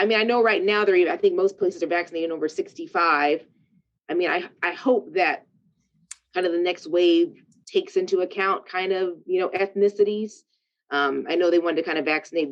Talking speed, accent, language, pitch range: 210 wpm, American, English, 145-180 Hz